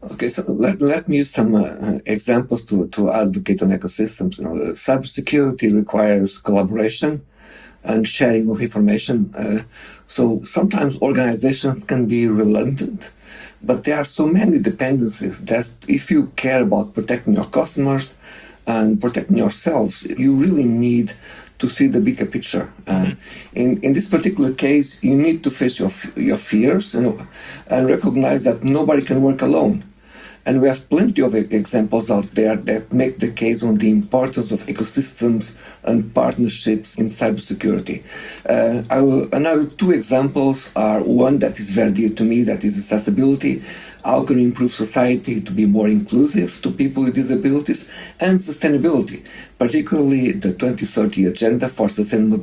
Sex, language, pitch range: male, English, 110-145 Hz